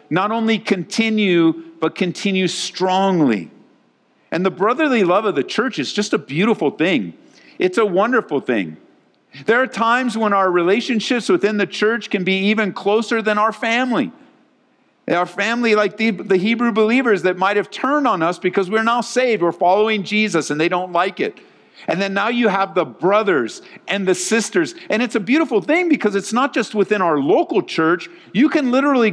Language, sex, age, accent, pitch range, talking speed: English, male, 50-69, American, 185-245 Hz, 180 wpm